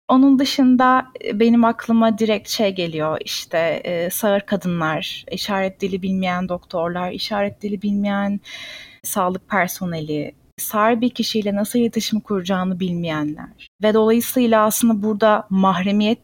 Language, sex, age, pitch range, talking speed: Turkish, female, 30-49, 180-230 Hz, 115 wpm